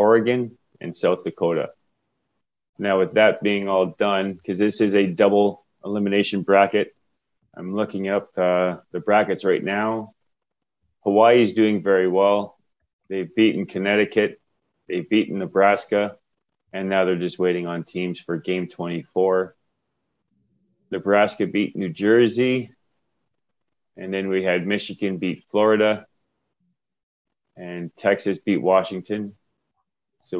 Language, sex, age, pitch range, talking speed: English, male, 30-49, 95-105 Hz, 120 wpm